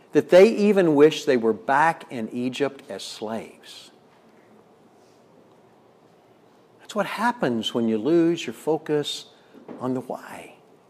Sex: male